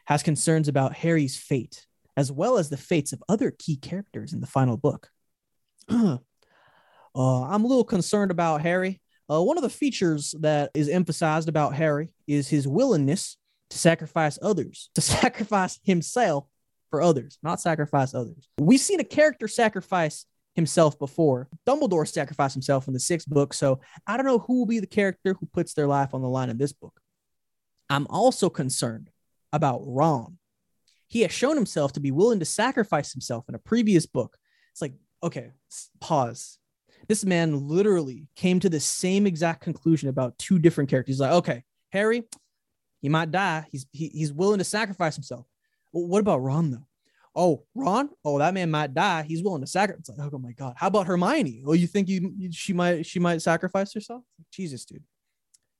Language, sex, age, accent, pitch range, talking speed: English, male, 20-39, American, 140-190 Hz, 180 wpm